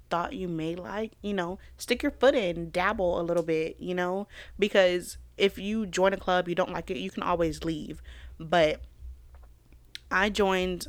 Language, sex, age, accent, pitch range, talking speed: English, female, 20-39, American, 160-190 Hz, 180 wpm